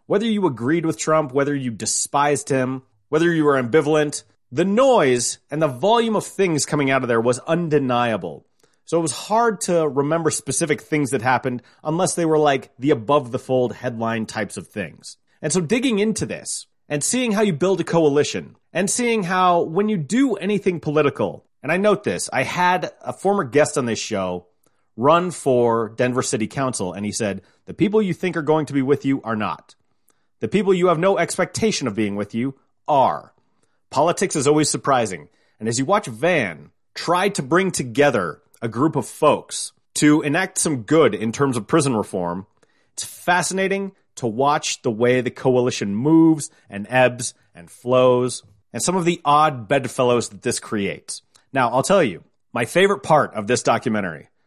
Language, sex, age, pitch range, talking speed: English, male, 30-49, 125-175 Hz, 185 wpm